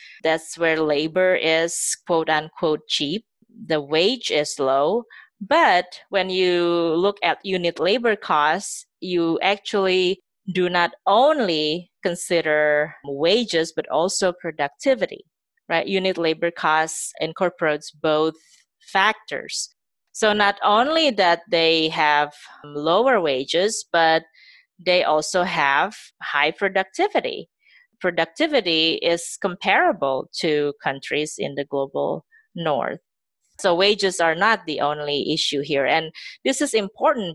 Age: 30-49